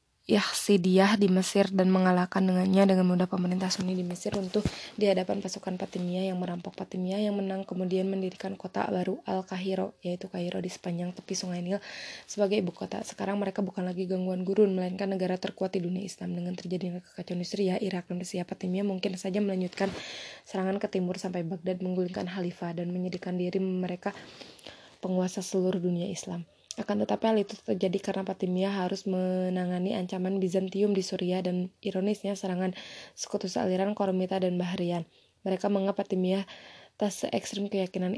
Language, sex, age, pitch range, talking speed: Indonesian, female, 20-39, 185-195 Hz, 160 wpm